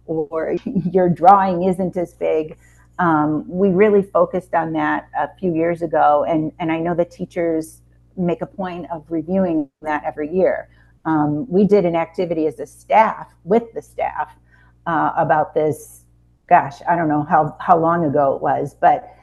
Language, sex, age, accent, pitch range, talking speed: English, female, 40-59, American, 150-175 Hz, 170 wpm